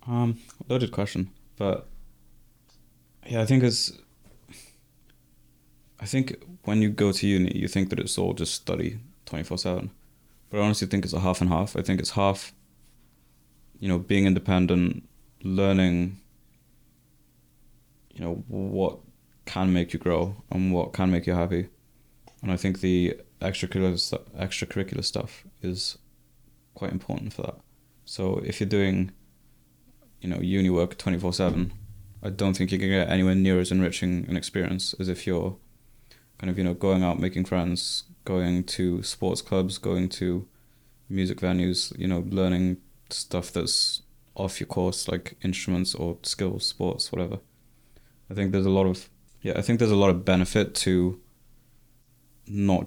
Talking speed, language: 155 wpm, English